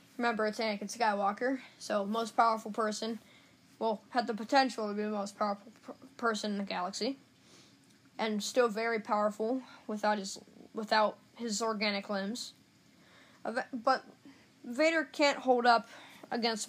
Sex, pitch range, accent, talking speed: female, 220-265 Hz, American, 135 wpm